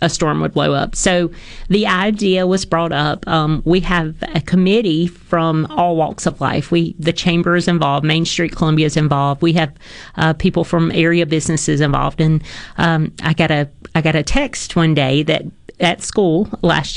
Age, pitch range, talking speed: 40-59, 155-185 Hz, 190 wpm